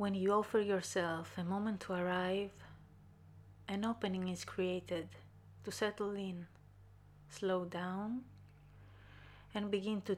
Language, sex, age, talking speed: English, female, 30-49, 120 wpm